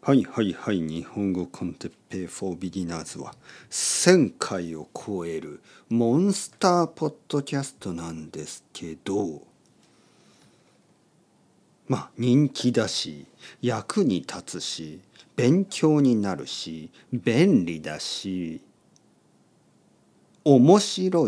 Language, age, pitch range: Japanese, 50-69, 95-150 Hz